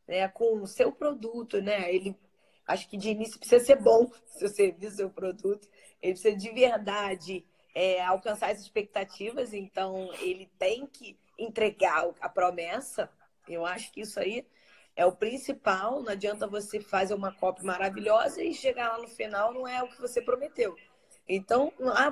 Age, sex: 20-39, female